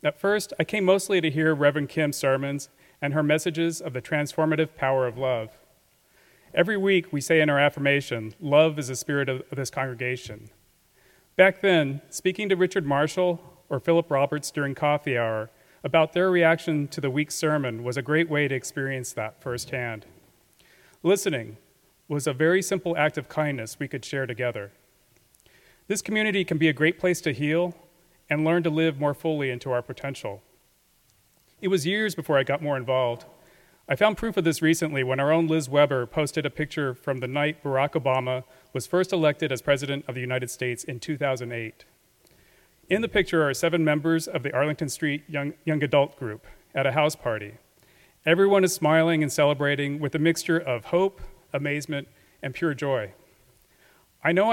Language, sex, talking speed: English, male, 180 wpm